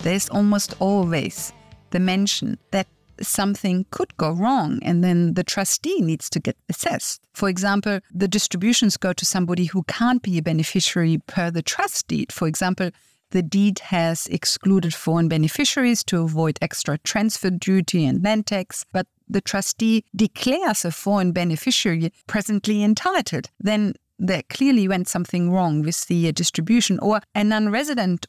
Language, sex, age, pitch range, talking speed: English, female, 50-69, 175-220 Hz, 150 wpm